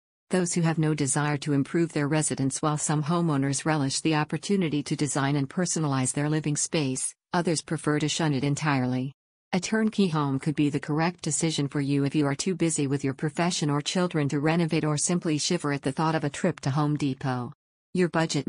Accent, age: American, 50-69